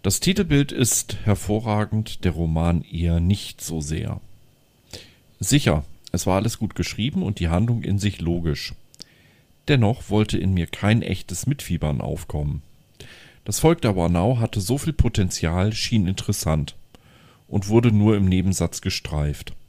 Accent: German